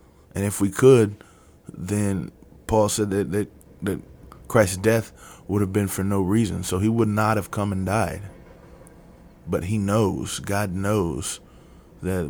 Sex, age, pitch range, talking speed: male, 20-39, 95-105 Hz, 155 wpm